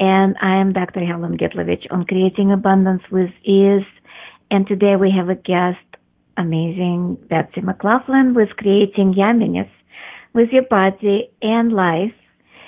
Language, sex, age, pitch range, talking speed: English, female, 50-69, 175-215 Hz, 135 wpm